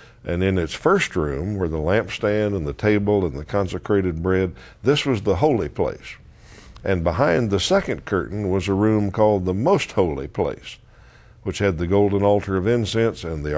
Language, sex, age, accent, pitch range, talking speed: English, male, 60-79, American, 85-105 Hz, 185 wpm